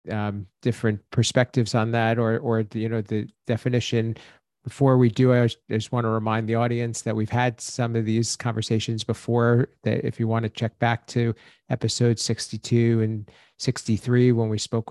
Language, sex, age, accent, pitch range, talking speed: English, male, 40-59, American, 110-130 Hz, 180 wpm